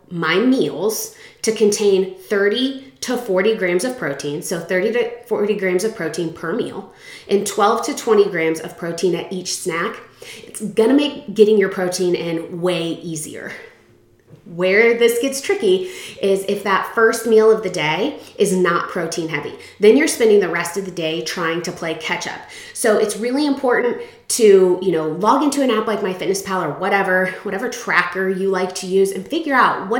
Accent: American